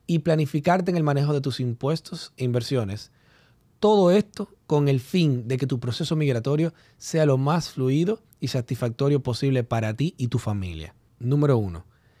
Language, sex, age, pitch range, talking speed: Spanish, male, 30-49, 120-155 Hz, 165 wpm